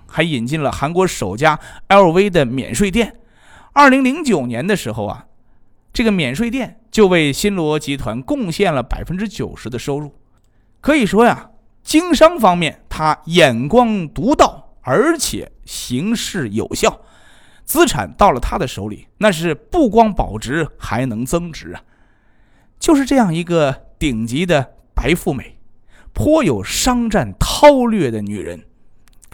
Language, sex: Chinese, male